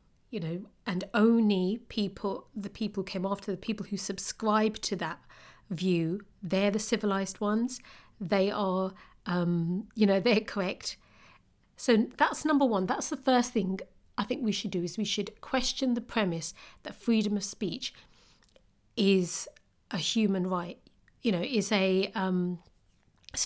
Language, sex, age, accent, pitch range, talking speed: English, female, 40-59, British, 190-220 Hz, 155 wpm